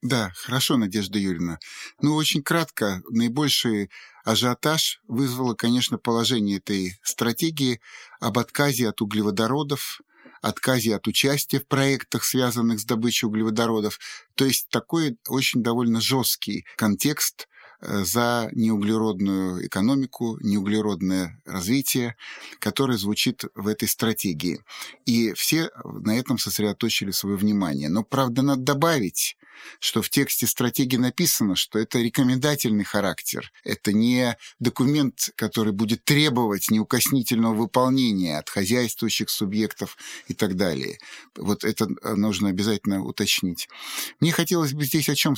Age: 30-49